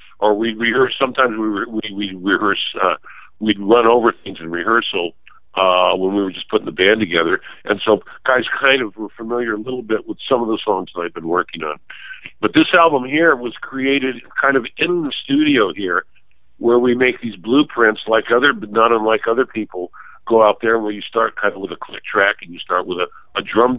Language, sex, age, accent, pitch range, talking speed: English, male, 50-69, American, 100-120 Hz, 220 wpm